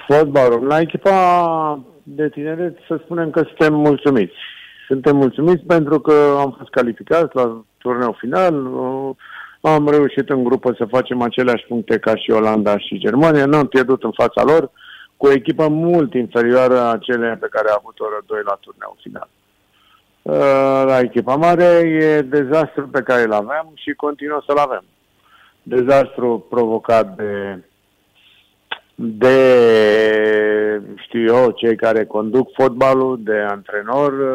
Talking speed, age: 140 wpm, 50-69